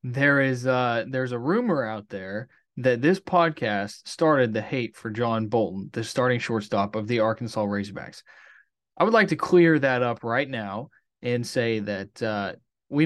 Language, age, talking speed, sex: English, 20-39, 170 wpm, male